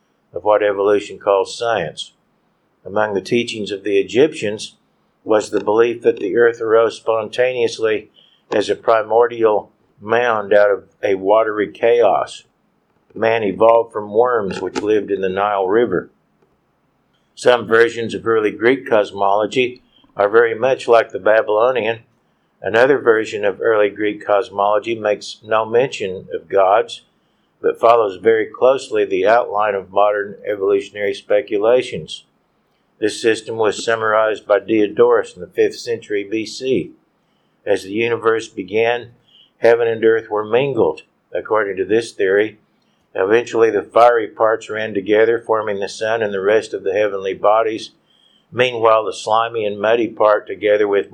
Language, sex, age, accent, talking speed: English, male, 50-69, American, 140 wpm